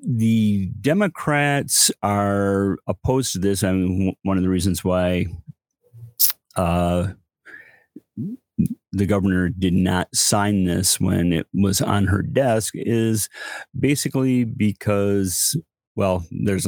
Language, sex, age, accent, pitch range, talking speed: English, male, 40-59, American, 90-110 Hz, 110 wpm